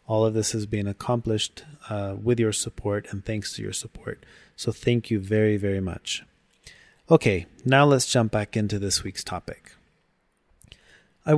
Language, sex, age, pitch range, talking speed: English, male, 30-49, 100-120 Hz, 165 wpm